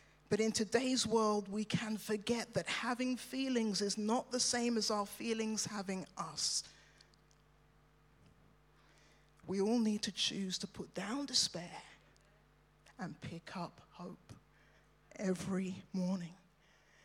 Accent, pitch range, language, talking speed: British, 205-280 Hz, English, 120 wpm